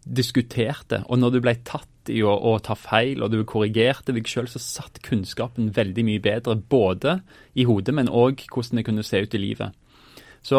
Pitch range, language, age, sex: 110-130 Hz, English, 30-49, male